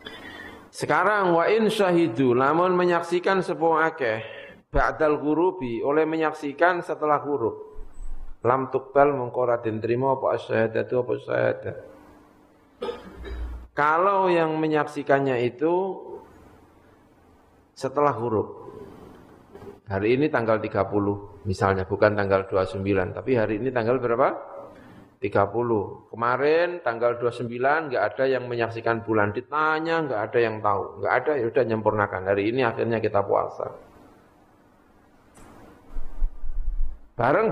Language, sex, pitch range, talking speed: Indonesian, male, 105-155 Hz, 105 wpm